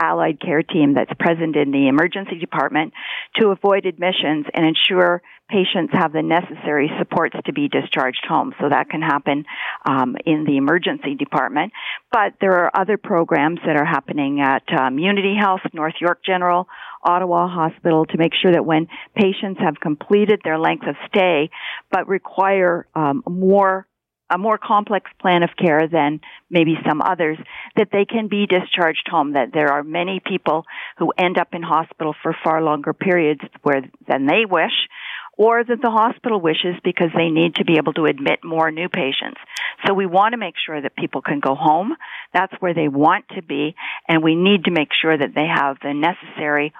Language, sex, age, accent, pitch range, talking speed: English, female, 50-69, American, 155-190 Hz, 180 wpm